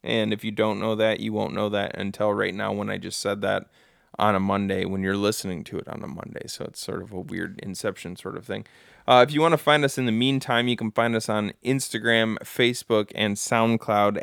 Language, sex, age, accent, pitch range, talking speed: English, male, 20-39, American, 105-130 Hz, 245 wpm